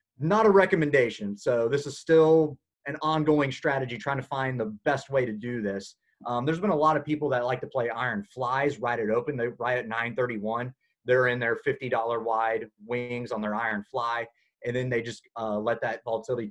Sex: male